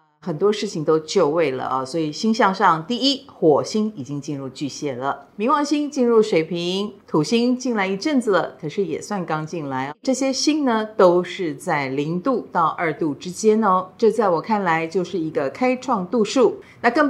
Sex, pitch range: female, 165-240 Hz